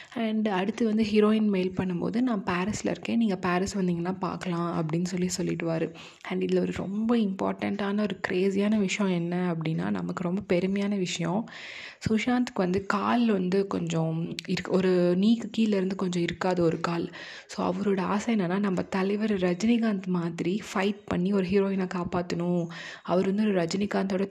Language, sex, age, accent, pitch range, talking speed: Tamil, female, 20-39, native, 180-210 Hz, 145 wpm